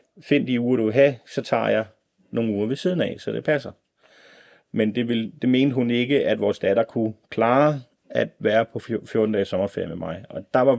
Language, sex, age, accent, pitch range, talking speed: Danish, male, 30-49, native, 100-120 Hz, 220 wpm